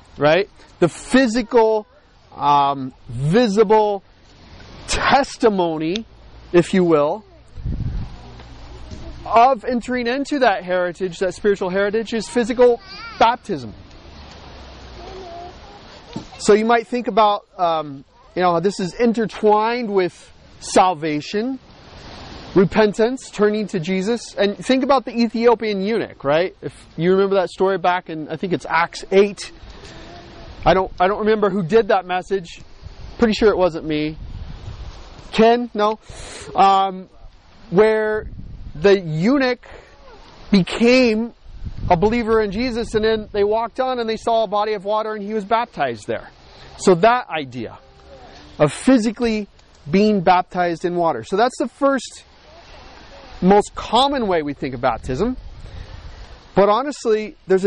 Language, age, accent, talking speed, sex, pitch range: English, 30-49, American, 125 wpm, male, 170-230 Hz